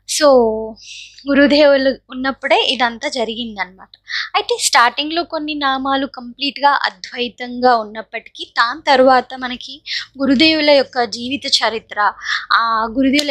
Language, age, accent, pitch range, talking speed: Telugu, 20-39, native, 235-280 Hz, 90 wpm